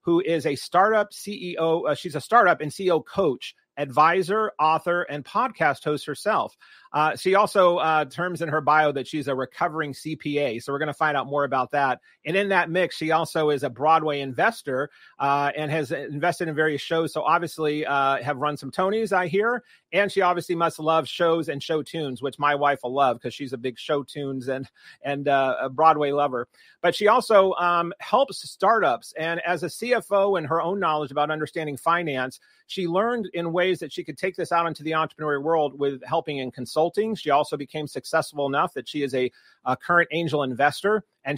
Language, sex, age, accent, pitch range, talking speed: English, male, 30-49, American, 145-175 Hz, 205 wpm